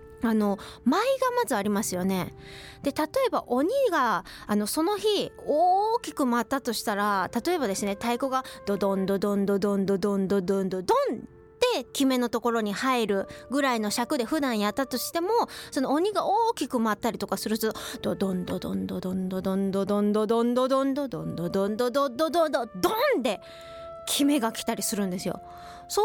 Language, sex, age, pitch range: Japanese, female, 20-39, 205-335 Hz